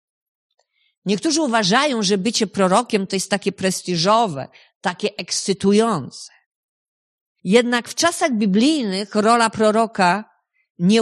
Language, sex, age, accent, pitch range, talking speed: Polish, female, 50-69, native, 190-240 Hz, 100 wpm